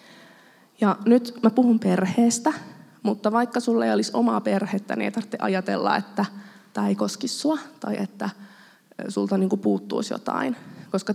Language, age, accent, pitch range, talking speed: Finnish, 20-39, native, 190-225 Hz, 150 wpm